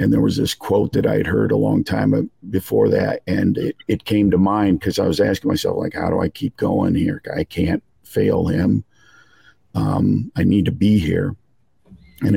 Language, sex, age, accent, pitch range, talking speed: English, male, 50-69, American, 95-110 Hz, 210 wpm